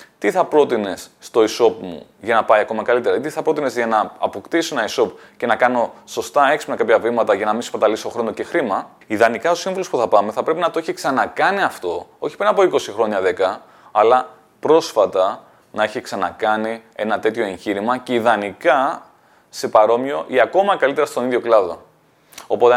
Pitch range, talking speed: 110-160 Hz, 190 wpm